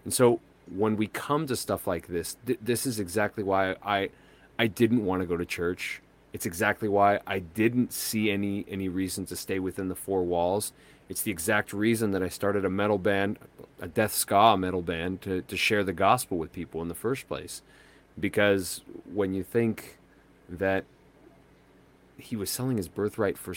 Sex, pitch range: male, 95-115 Hz